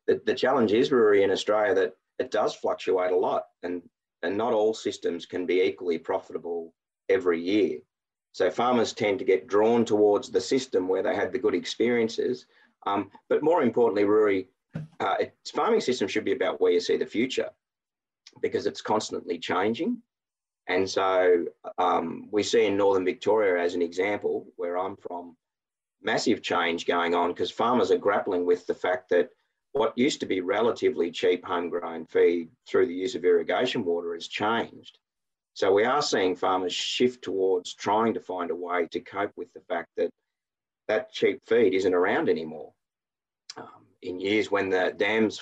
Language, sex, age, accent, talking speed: English, male, 30-49, Australian, 175 wpm